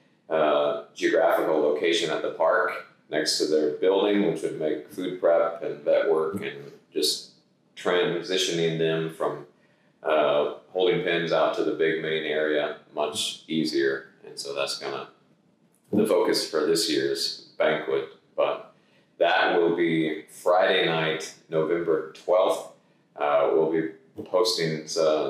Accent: American